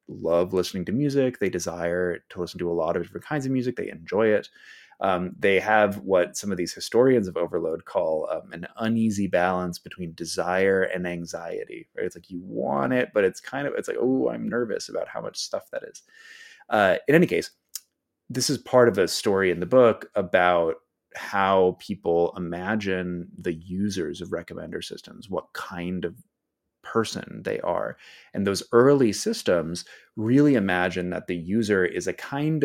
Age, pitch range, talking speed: 30-49, 90-115 Hz, 180 wpm